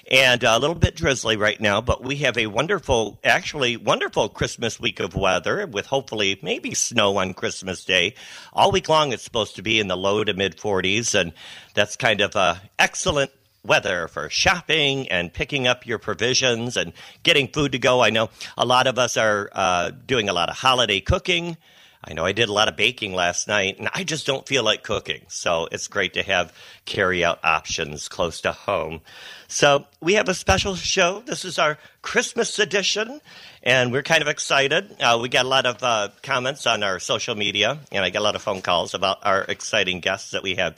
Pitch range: 105-150 Hz